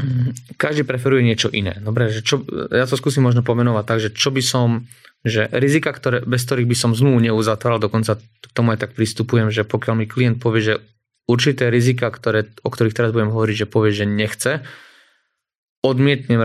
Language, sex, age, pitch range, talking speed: Slovak, male, 20-39, 110-125 Hz, 185 wpm